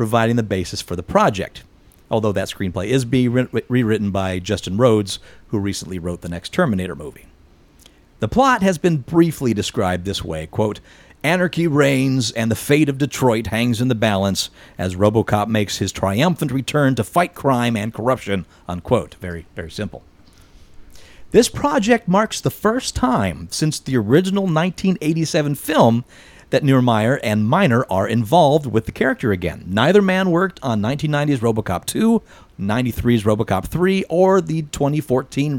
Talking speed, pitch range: 155 wpm, 105-160 Hz